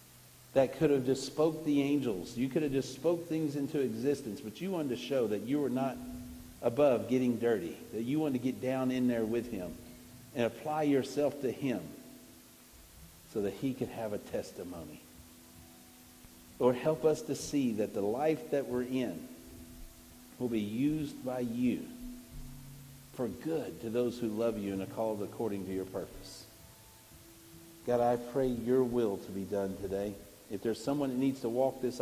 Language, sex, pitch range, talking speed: English, male, 105-135 Hz, 180 wpm